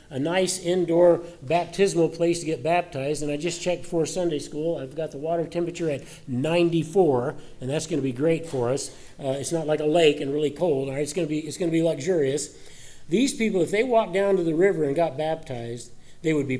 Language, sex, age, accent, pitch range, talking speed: English, male, 50-69, American, 155-190 Hz, 235 wpm